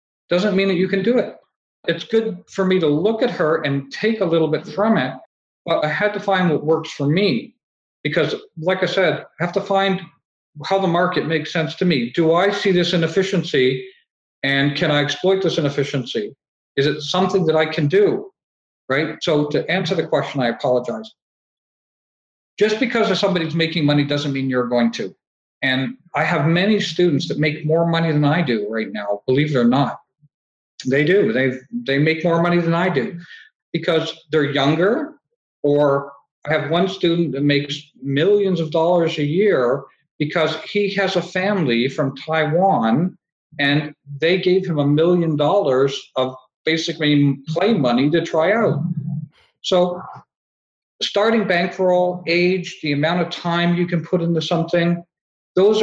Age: 50-69